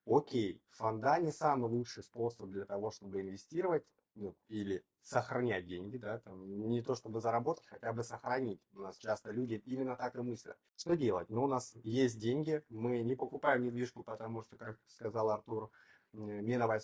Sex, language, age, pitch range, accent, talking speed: male, Russian, 30-49, 110-130 Hz, native, 175 wpm